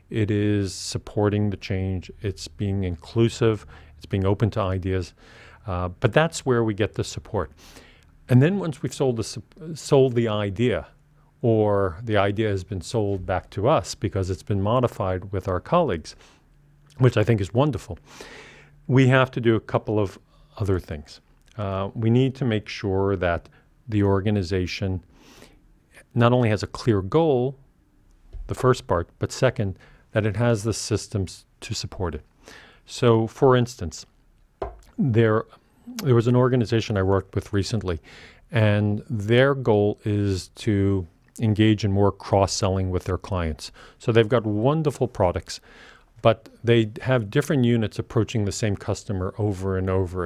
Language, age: Swedish, 40-59